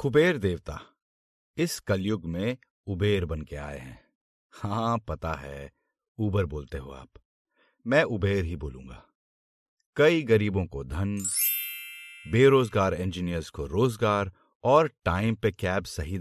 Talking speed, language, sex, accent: 125 wpm, Hindi, male, native